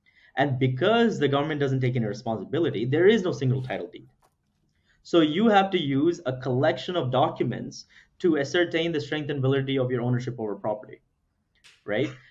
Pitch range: 115-140 Hz